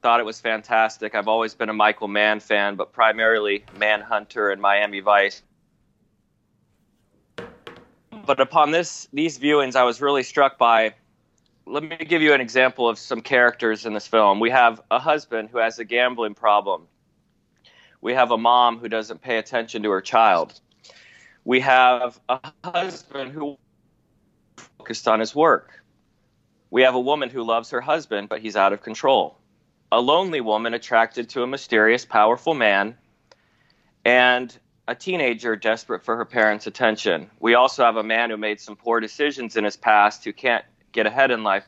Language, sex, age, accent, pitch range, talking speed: English, male, 30-49, American, 110-130 Hz, 170 wpm